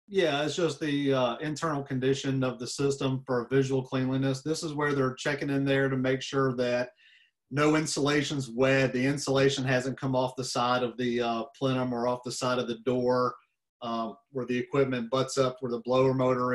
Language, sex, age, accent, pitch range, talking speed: English, male, 40-59, American, 125-145 Hz, 200 wpm